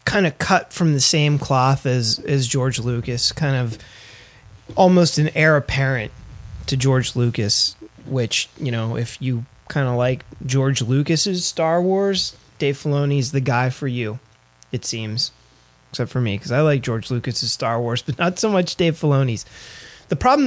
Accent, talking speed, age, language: American, 170 wpm, 30-49, English